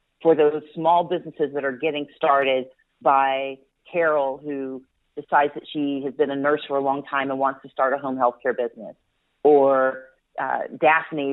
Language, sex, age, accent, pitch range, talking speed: English, female, 40-59, American, 145-190 Hz, 175 wpm